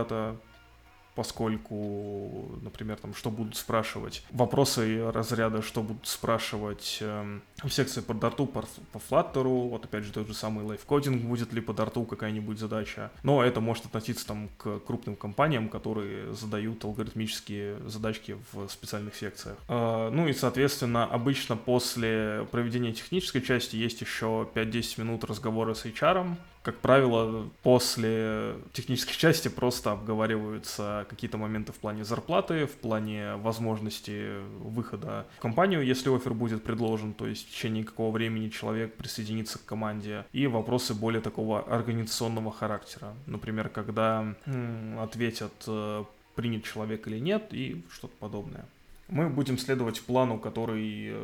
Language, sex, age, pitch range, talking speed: Russian, male, 20-39, 110-120 Hz, 140 wpm